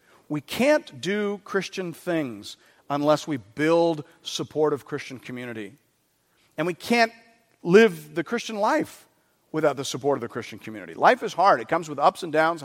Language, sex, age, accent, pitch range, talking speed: English, male, 50-69, American, 135-185 Hz, 160 wpm